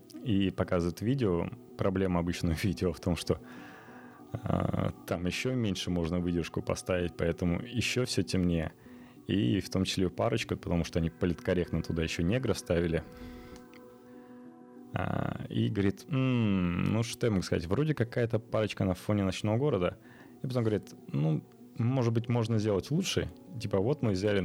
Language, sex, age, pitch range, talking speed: Russian, male, 20-39, 85-110 Hz, 155 wpm